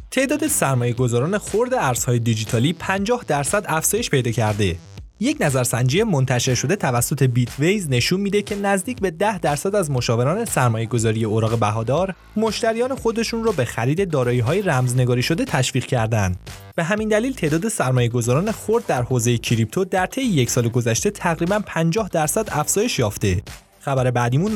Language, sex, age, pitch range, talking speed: Persian, male, 20-39, 125-205 Hz, 155 wpm